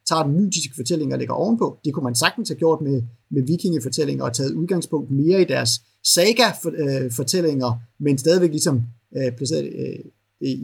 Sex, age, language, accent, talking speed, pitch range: male, 30-49, Danish, native, 165 wpm, 125-175 Hz